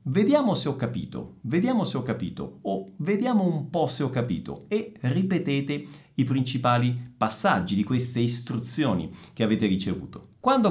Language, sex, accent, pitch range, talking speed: Italian, male, native, 120-195 Hz, 150 wpm